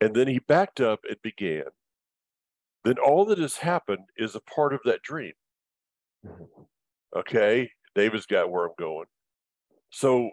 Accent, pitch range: American, 105-150 Hz